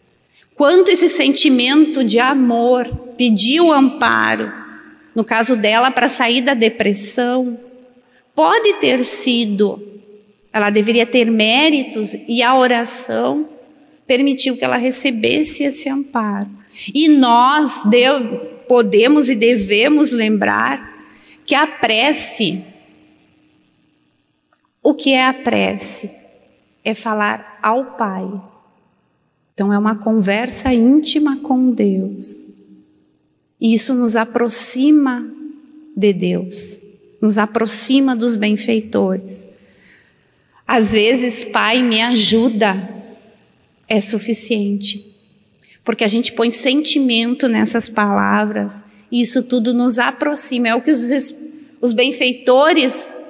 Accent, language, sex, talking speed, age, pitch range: Brazilian, Portuguese, female, 100 wpm, 30-49, 215-260 Hz